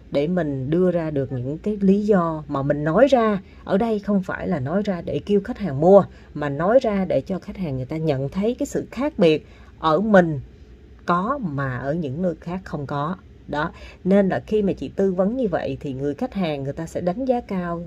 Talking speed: 235 wpm